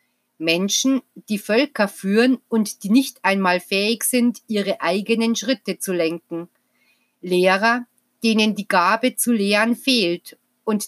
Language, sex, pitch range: German, female, 195-240 Hz